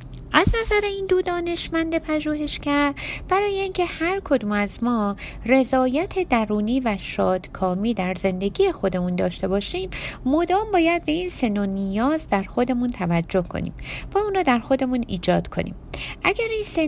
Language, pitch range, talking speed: Persian, 195-325 Hz, 145 wpm